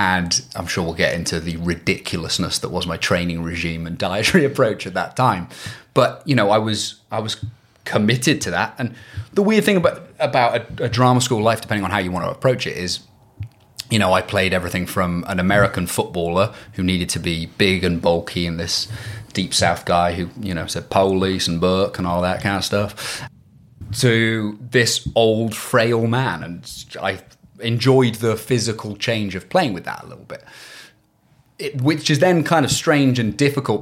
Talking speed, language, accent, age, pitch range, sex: 195 wpm, English, British, 30-49, 95-125 Hz, male